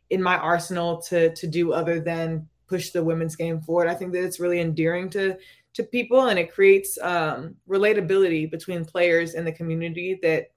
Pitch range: 160-185 Hz